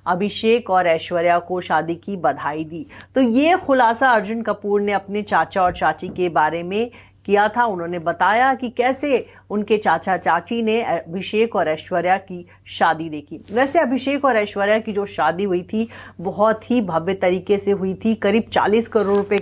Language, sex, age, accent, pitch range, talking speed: English, female, 30-49, Indian, 185-235 Hz, 170 wpm